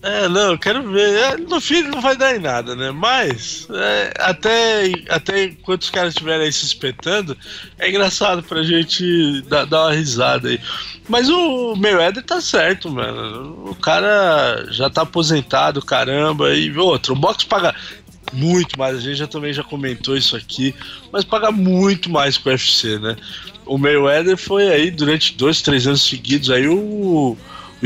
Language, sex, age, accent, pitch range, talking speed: Portuguese, male, 20-39, Brazilian, 130-185 Hz, 170 wpm